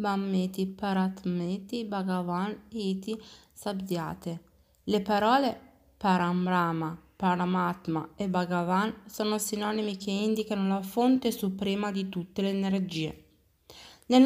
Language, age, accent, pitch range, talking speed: Italian, 20-39, native, 175-220 Hz, 95 wpm